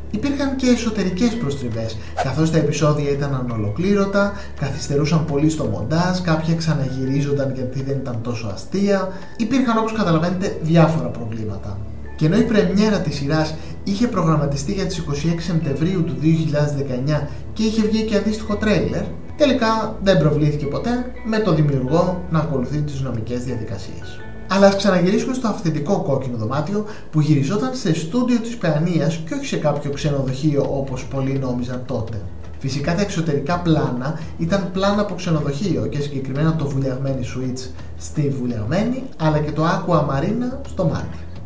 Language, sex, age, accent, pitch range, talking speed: Greek, male, 30-49, native, 135-190 Hz, 145 wpm